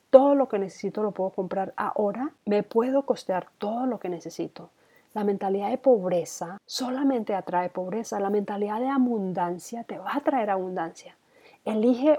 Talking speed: 160 wpm